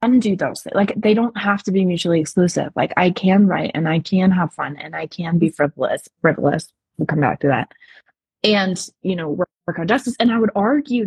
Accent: American